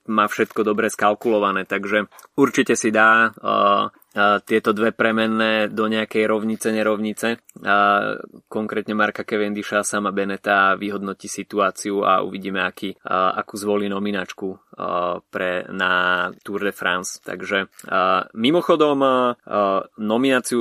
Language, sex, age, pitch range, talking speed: Slovak, male, 20-39, 100-115 Hz, 110 wpm